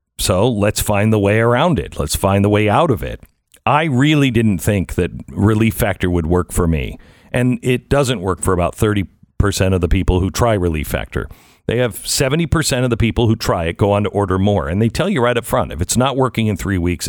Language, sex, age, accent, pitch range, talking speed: English, male, 50-69, American, 95-130 Hz, 235 wpm